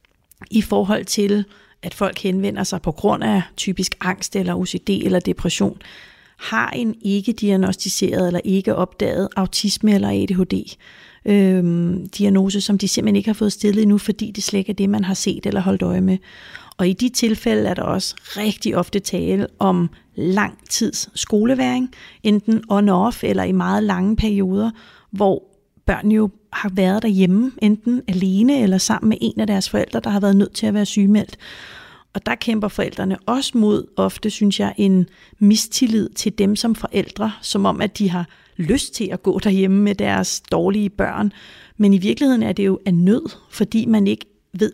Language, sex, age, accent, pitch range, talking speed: Danish, female, 30-49, native, 190-210 Hz, 175 wpm